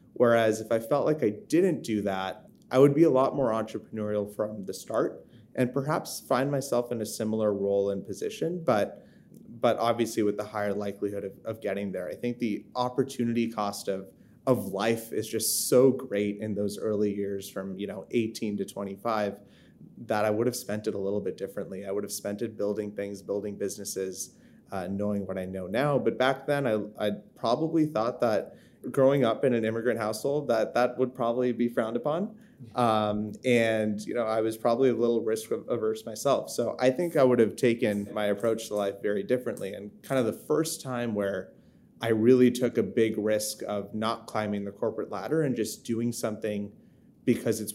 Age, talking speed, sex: 30-49, 200 wpm, male